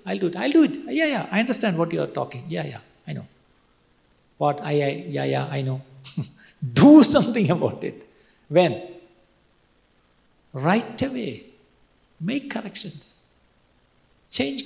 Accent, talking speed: native, 145 wpm